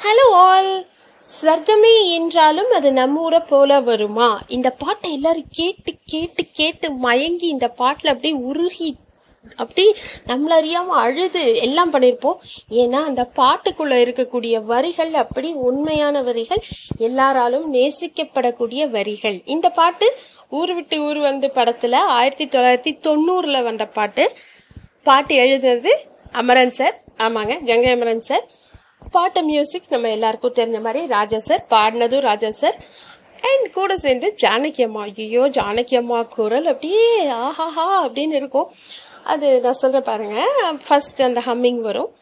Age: 30-49